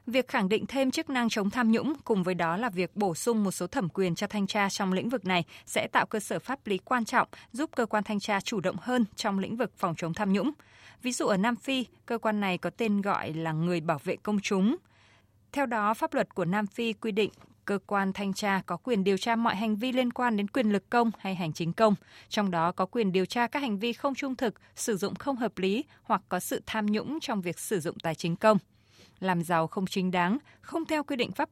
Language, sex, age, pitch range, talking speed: Vietnamese, female, 20-39, 180-240 Hz, 260 wpm